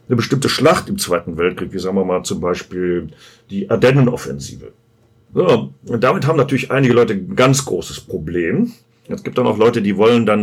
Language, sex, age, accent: German, male, 40-59, German